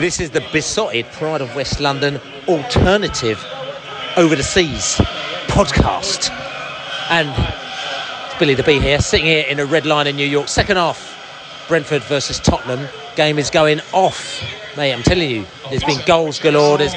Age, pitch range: 40-59, 145-170 Hz